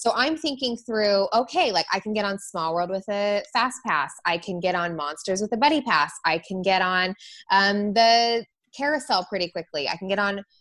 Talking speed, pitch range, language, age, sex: 215 wpm, 185-235 Hz, English, 20-39, female